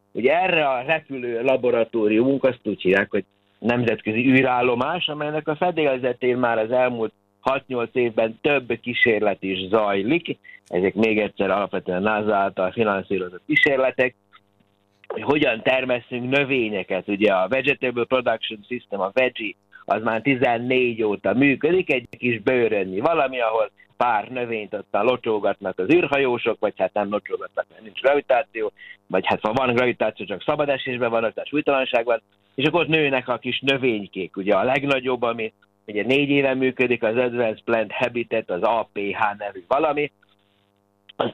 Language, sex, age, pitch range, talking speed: Hungarian, male, 60-79, 105-135 Hz, 150 wpm